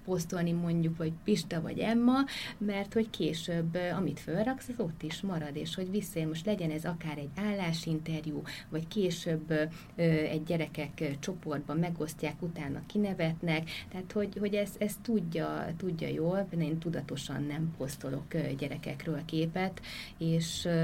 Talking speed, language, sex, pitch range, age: 140 wpm, Hungarian, female, 155-185 Hz, 30-49